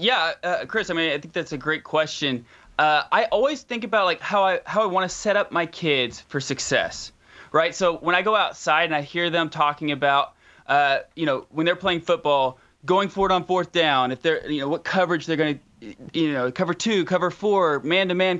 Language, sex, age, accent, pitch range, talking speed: English, male, 20-39, American, 155-195 Hz, 225 wpm